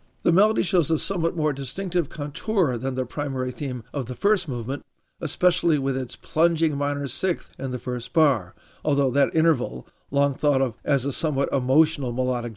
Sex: male